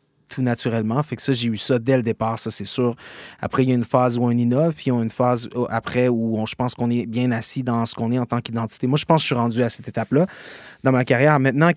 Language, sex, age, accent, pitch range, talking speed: French, male, 20-39, Canadian, 120-145 Hz, 295 wpm